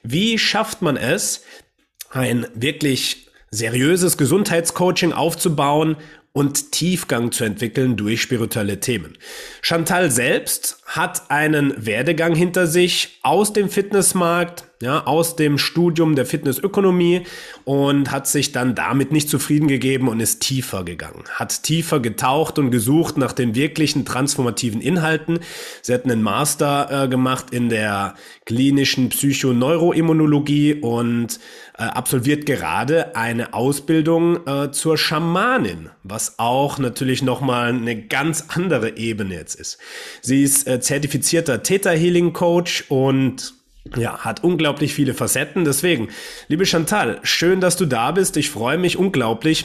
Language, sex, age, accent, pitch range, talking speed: German, male, 30-49, German, 130-170 Hz, 130 wpm